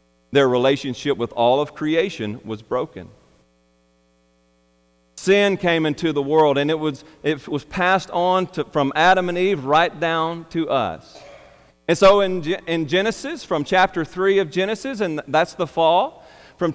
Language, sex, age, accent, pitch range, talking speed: English, male, 40-59, American, 120-185 Hz, 160 wpm